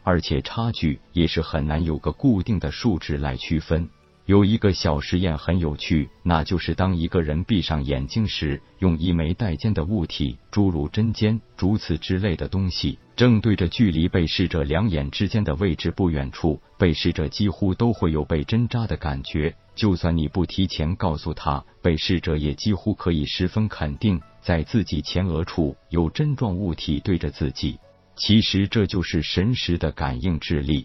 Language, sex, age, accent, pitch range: Chinese, male, 50-69, native, 75-100 Hz